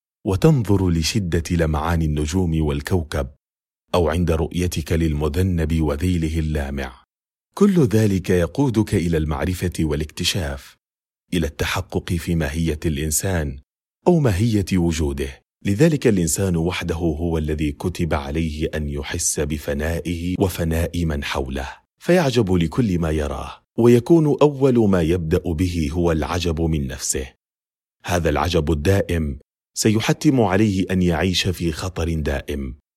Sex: male